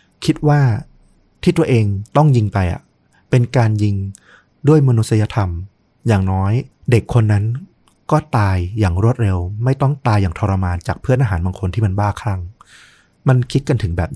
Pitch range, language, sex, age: 95-130 Hz, Thai, male, 30-49